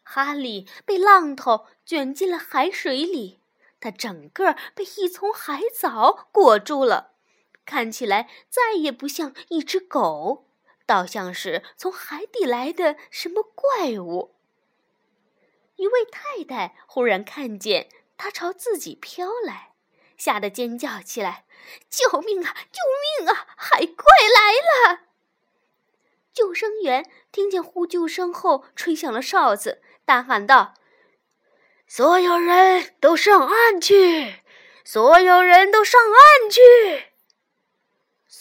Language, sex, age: Chinese, female, 20-39